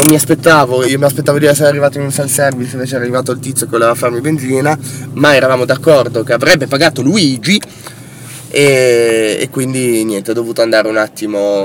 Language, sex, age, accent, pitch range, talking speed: Italian, male, 20-39, native, 110-160 Hz, 190 wpm